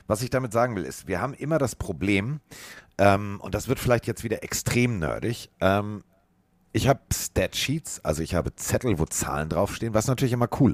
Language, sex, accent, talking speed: German, male, German, 195 wpm